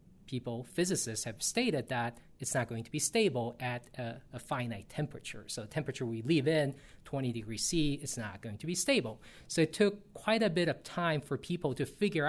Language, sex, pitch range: English, male, 120-160 Hz